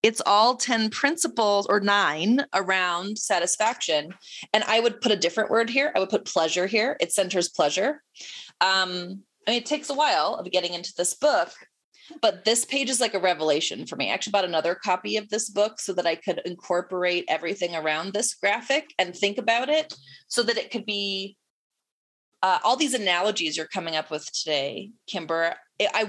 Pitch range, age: 175-235 Hz, 30-49